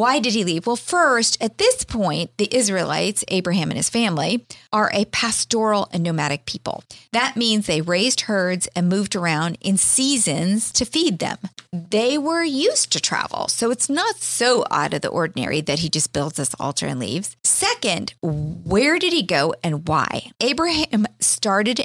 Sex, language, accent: female, English, American